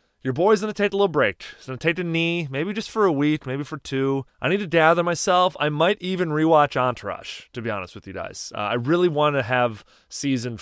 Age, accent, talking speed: 30-49, American, 255 wpm